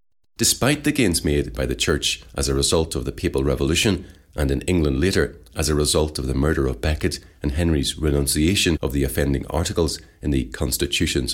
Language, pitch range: English, 70-95 Hz